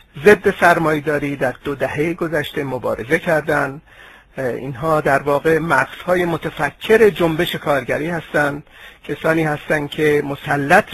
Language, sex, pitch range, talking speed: Persian, male, 145-175 Hz, 115 wpm